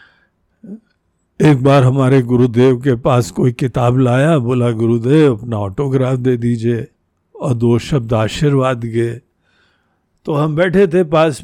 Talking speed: 130 wpm